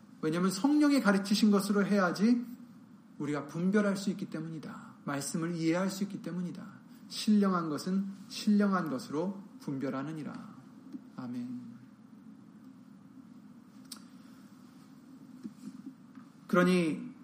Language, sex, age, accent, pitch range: Korean, male, 40-59, native, 195-235 Hz